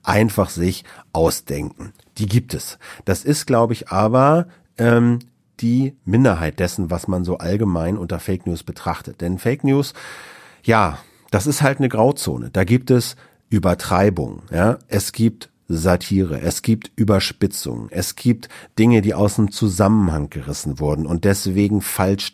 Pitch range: 95-120 Hz